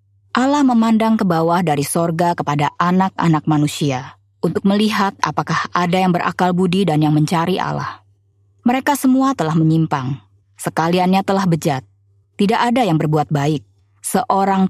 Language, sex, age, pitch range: Indonesian, female, 20-39, 145-200 Hz